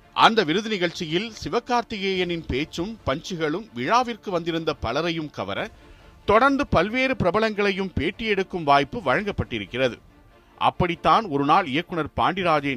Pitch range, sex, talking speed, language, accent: 140-225 Hz, male, 105 wpm, Tamil, native